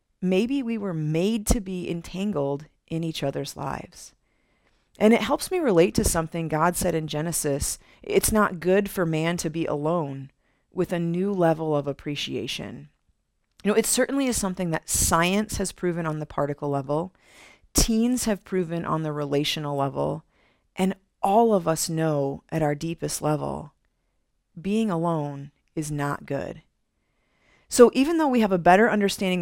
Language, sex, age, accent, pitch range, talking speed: English, female, 40-59, American, 155-195 Hz, 160 wpm